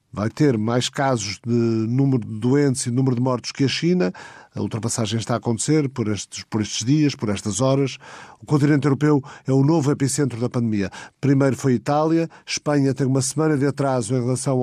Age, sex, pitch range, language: 50-69, male, 120-135 Hz, Portuguese